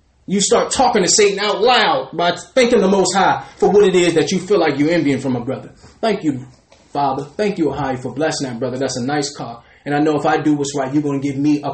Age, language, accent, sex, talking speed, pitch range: 20-39, English, American, male, 270 wpm, 135-185 Hz